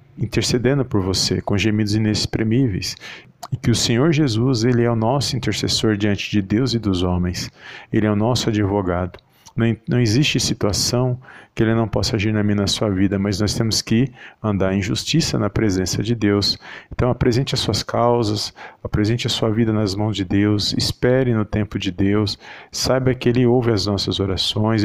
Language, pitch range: Portuguese, 105-120 Hz